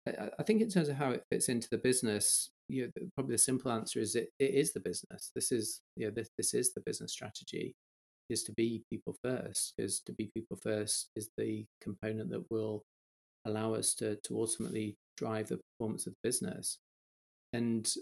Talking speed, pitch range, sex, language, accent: 200 wpm, 105-115 Hz, male, English, British